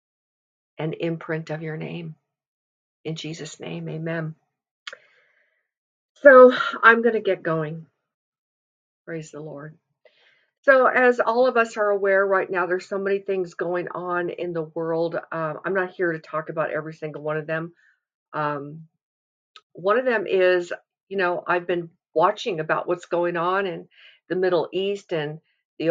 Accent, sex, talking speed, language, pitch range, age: American, female, 155 wpm, English, 160-215 Hz, 50-69